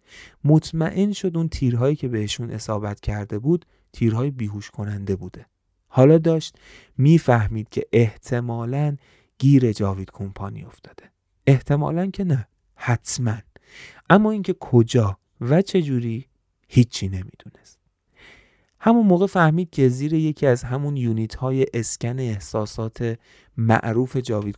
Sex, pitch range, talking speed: male, 110-150 Hz, 115 wpm